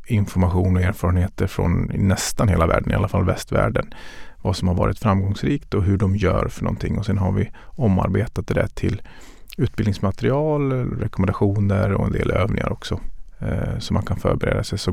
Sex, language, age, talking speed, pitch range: male, Swedish, 30-49, 175 wpm, 95-110 Hz